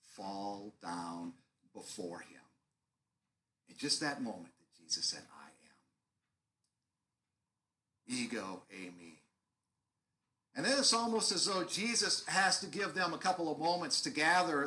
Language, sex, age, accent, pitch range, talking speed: English, male, 50-69, American, 125-195 Hz, 135 wpm